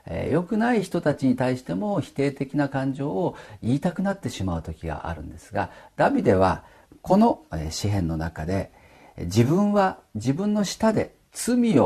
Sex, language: male, Japanese